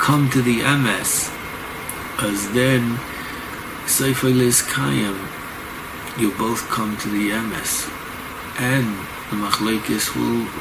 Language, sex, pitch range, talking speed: English, male, 105-120 Hz, 100 wpm